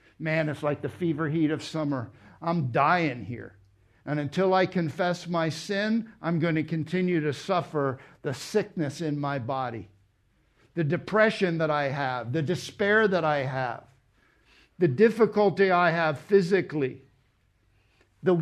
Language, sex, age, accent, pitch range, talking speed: English, male, 60-79, American, 125-180 Hz, 145 wpm